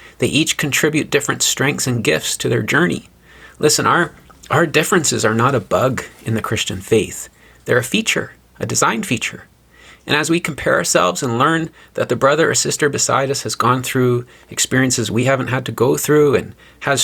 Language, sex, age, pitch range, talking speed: English, male, 30-49, 105-150 Hz, 190 wpm